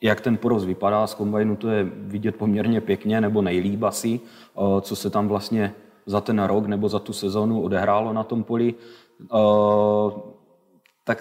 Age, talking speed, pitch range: 30-49, 160 wpm, 105-115 Hz